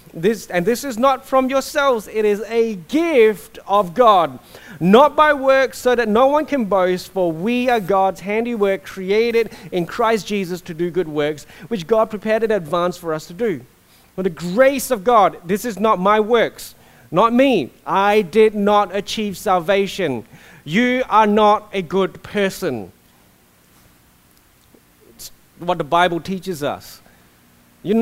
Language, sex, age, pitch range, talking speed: English, male, 30-49, 185-240 Hz, 160 wpm